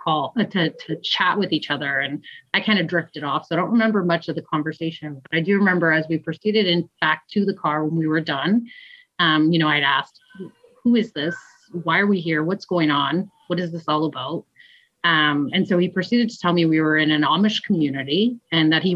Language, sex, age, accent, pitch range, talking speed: English, female, 30-49, American, 155-200 Hz, 230 wpm